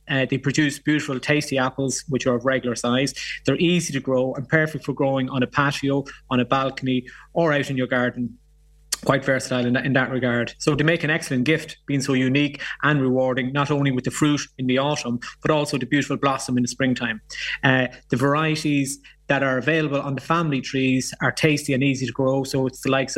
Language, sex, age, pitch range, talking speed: English, male, 30-49, 130-145 Hz, 215 wpm